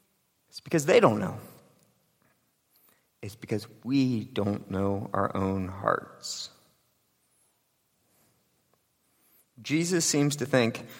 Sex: male